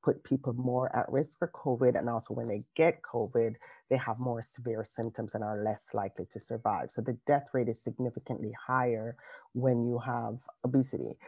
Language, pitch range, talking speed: English, 115-135 Hz, 185 wpm